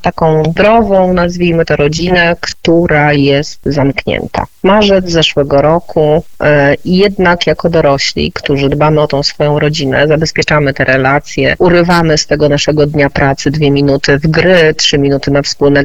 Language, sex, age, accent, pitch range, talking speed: Polish, female, 30-49, native, 150-175 Hz, 140 wpm